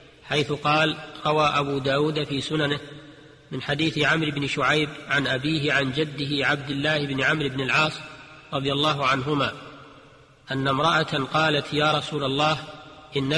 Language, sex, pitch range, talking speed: Arabic, male, 145-155 Hz, 145 wpm